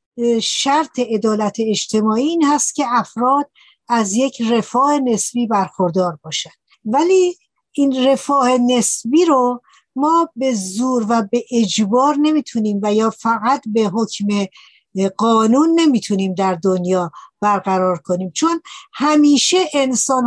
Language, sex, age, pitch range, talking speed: Persian, female, 60-79, 215-275 Hz, 115 wpm